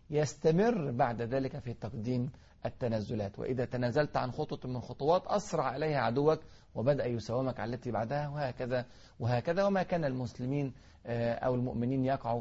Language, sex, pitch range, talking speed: Arabic, male, 115-150 Hz, 135 wpm